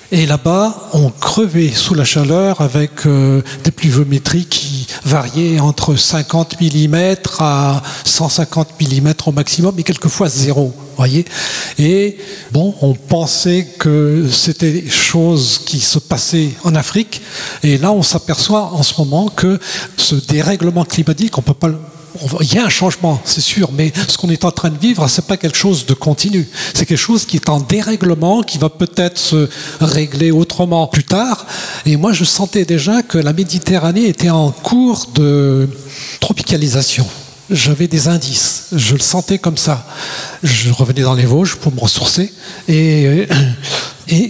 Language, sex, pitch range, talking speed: French, male, 145-180 Hz, 165 wpm